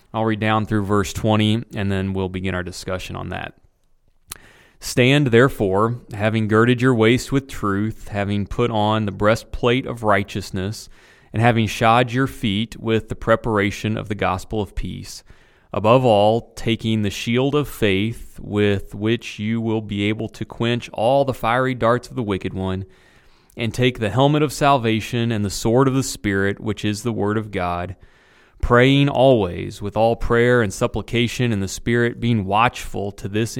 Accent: American